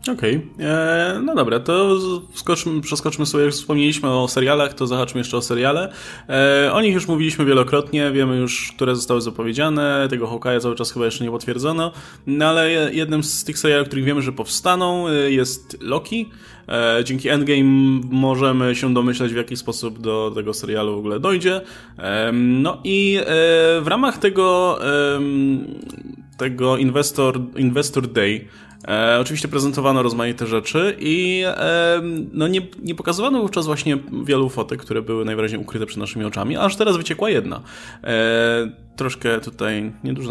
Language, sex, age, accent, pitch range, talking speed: Polish, male, 20-39, native, 115-155 Hz, 155 wpm